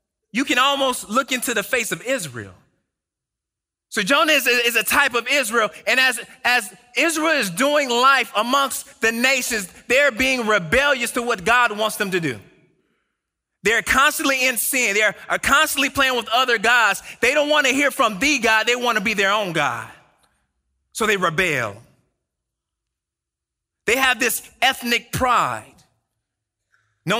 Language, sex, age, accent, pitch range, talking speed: English, male, 30-49, American, 160-265 Hz, 160 wpm